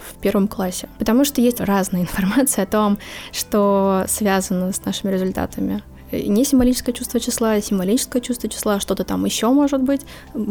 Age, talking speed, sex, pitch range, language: 20-39, 155 wpm, female, 195-240 Hz, Russian